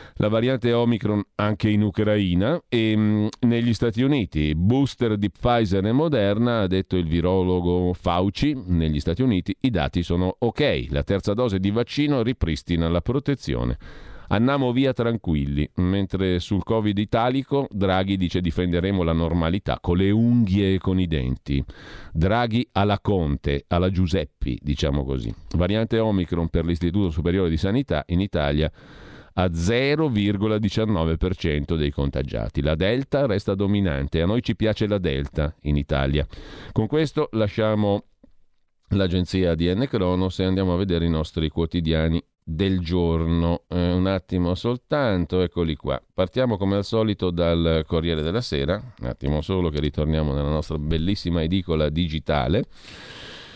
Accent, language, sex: native, Italian, male